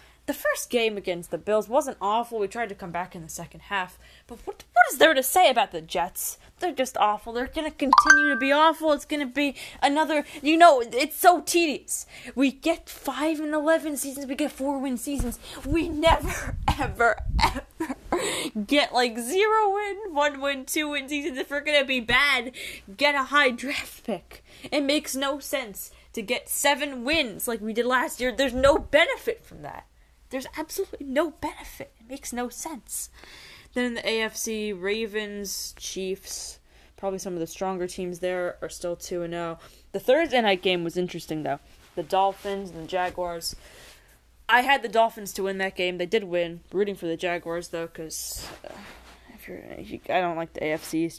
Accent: American